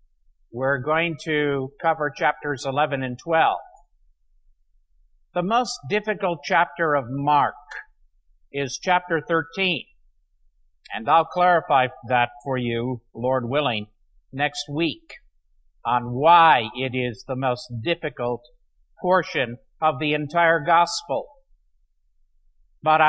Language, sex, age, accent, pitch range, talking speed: English, male, 50-69, American, 100-155 Hz, 105 wpm